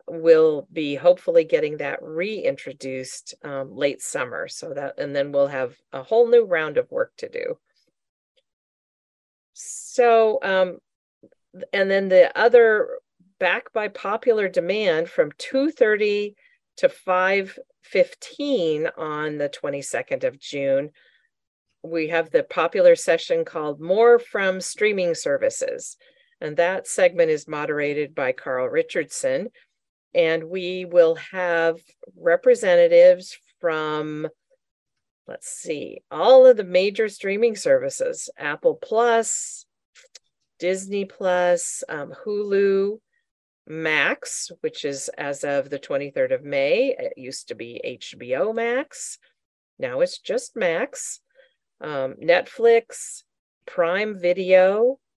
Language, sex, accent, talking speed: English, female, American, 115 wpm